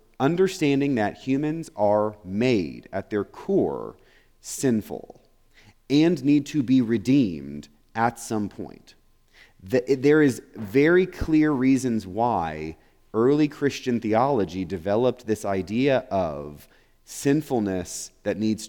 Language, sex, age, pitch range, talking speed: English, male, 30-49, 105-145 Hz, 105 wpm